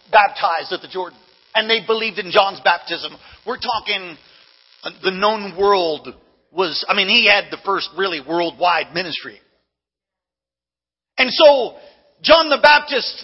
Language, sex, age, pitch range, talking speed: English, male, 40-59, 235-355 Hz, 135 wpm